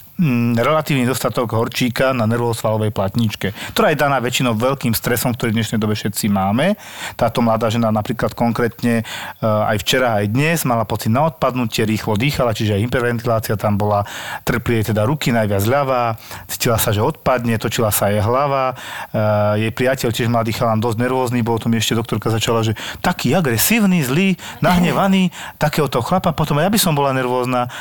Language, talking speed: Slovak, 170 wpm